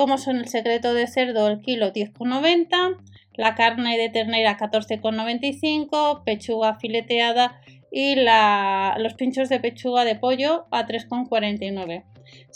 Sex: female